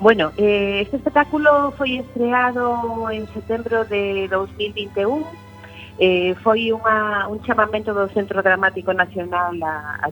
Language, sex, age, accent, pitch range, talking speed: Spanish, female, 40-59, Spanish, 170-215 Hz, 105 wpm